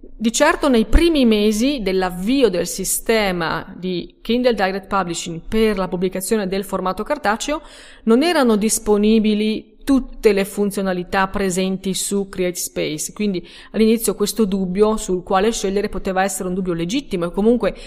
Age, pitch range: 30-49, 195-245 Hz